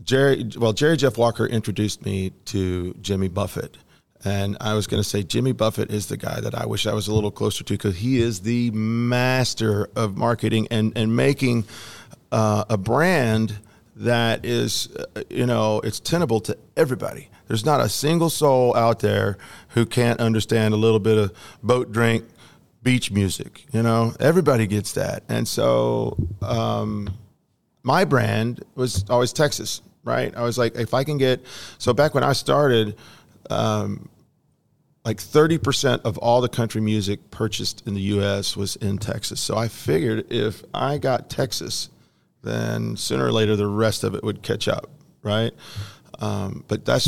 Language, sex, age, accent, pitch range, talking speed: English, male, 40-59, American, 105-120 Hz, 170 wpm